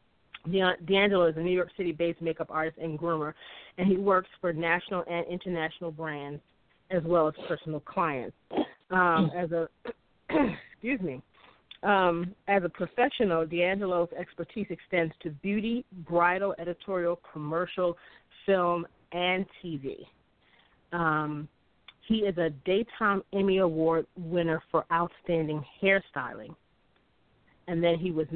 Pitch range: 160-185 Hz